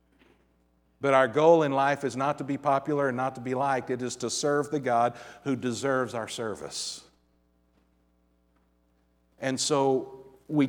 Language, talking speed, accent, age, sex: English, 155 wpm, American, 50-69, male